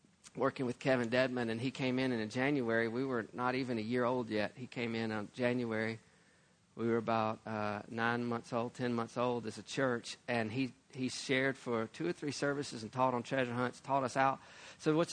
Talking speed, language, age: 220 wpm, English, 40-59